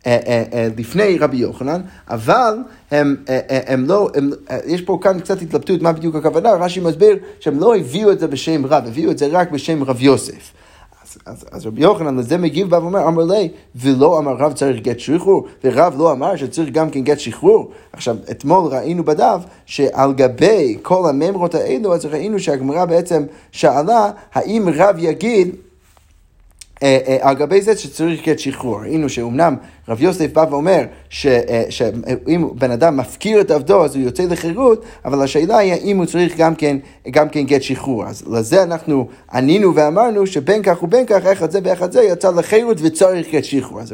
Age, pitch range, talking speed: 30-49, 135-185 Hz, 175 wpm